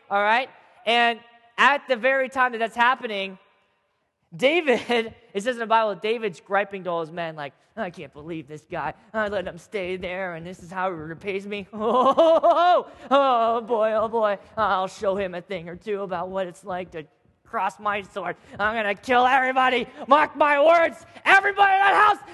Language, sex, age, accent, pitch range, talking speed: English, male, 20-39, American, 180-260 Hz, 200 wpm